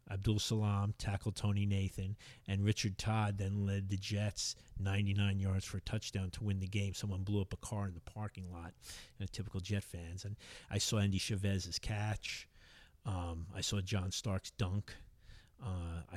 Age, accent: 40-59, American